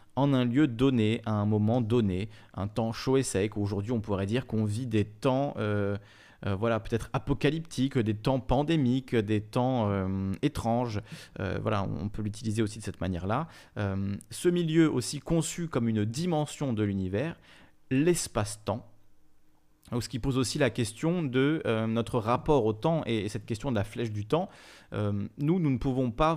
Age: 30-49